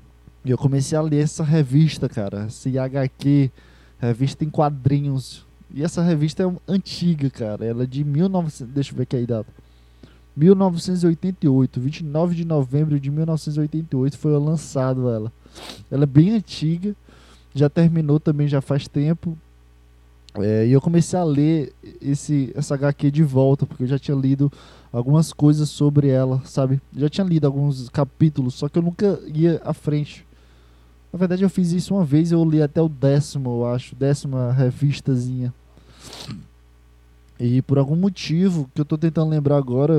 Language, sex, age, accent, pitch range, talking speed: Portuguese, male, 20-39, Brazilian, 130-160 Hz, 160 wpm